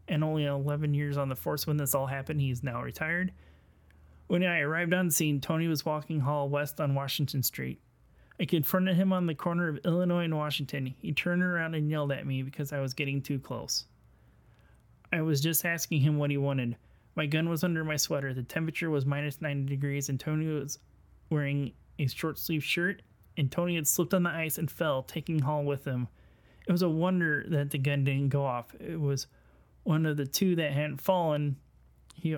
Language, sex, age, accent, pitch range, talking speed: English, male, 30-49, American, 135-160 Hz, 210 wpm